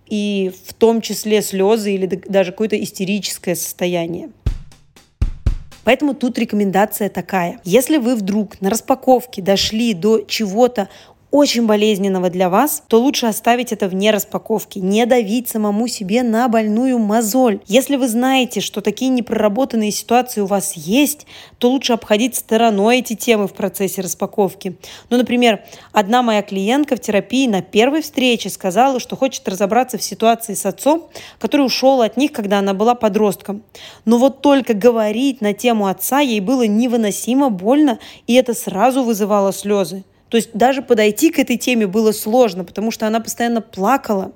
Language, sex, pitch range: Russian, female, 205-245 Hz